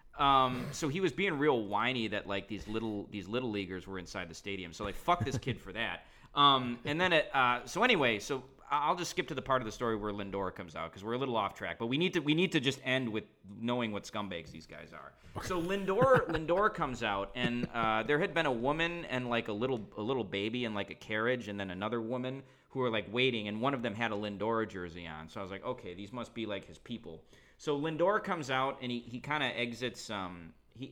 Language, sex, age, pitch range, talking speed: English, male, 30-49, 100-130 Hz, 255 wpm